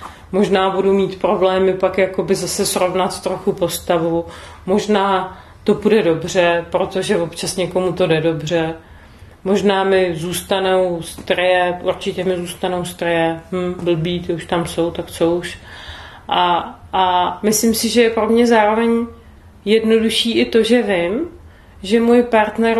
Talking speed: 140 wpm